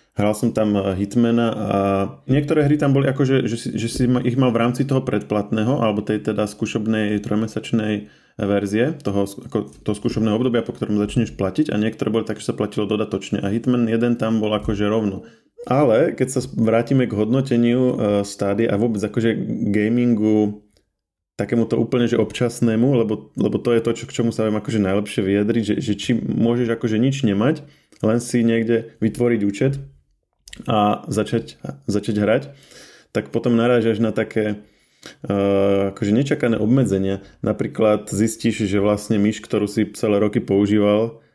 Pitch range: 105-115 Hz